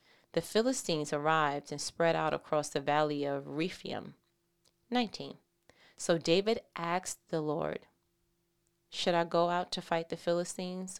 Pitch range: 155-195 Hz